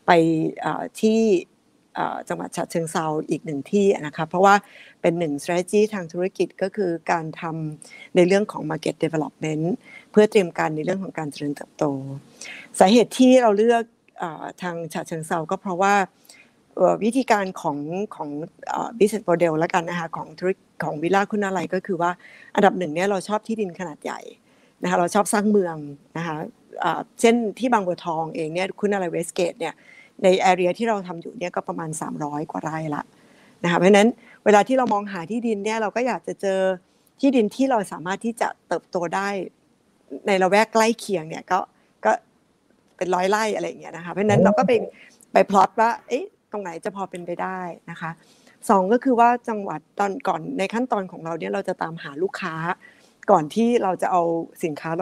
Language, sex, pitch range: Thai, female, 170-220 Hz